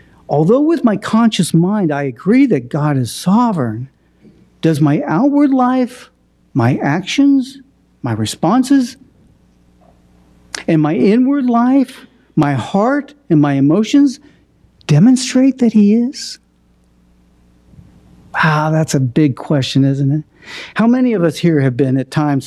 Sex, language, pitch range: male, English, 140-190 Hz